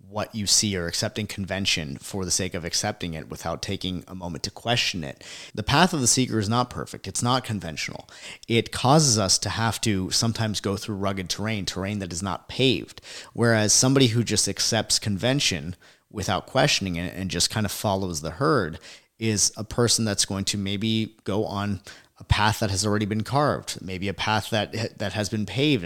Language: English